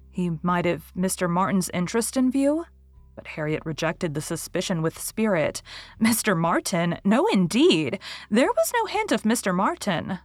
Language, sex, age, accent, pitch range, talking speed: English, female, 30-49, American, 175-235 Hz, 150 wpm